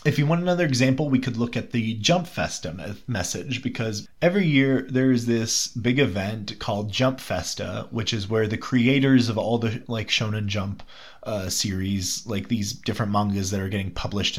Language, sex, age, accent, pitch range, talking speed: English, male, 20-39, American, 95-125 Hz, 185 wpm